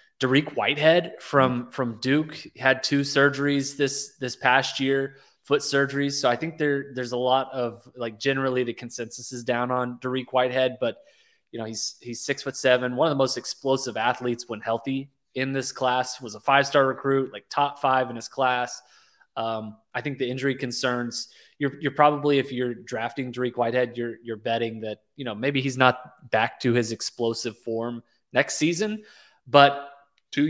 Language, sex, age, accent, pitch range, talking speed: English, male, 20-39, American, 125-140 Hz, 185 wpm